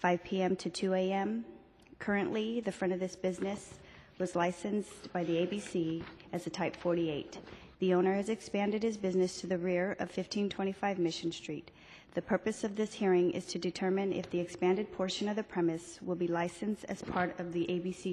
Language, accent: English, American